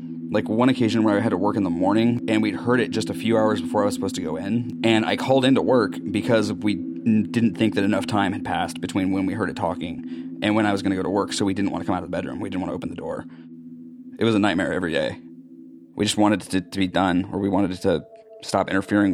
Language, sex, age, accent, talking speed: English, male, 30-49, American, 300 wpm